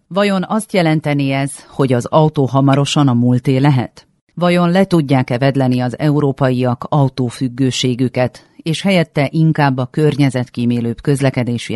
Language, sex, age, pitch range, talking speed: Hungarian, female, 40-59, 125-150 Hz, 115 wpm